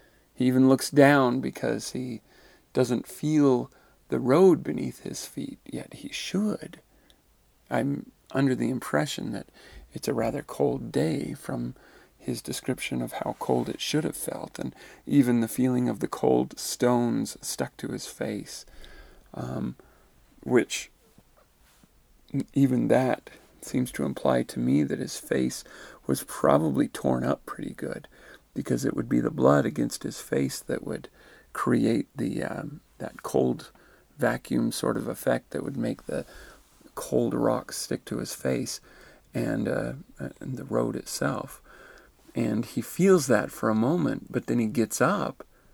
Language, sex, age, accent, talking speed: English, male, 40-59, American, 150 wpm